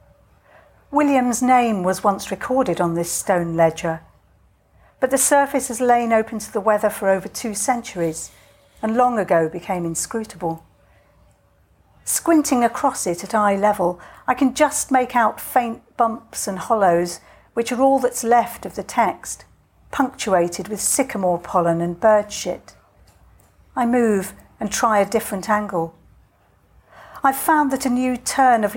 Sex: female